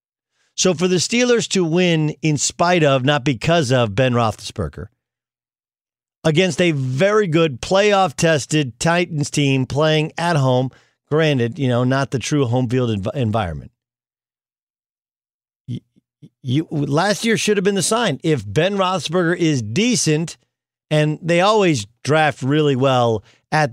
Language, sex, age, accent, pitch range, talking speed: English, male, 50-69, American, 130-185 Hz, 130 wpm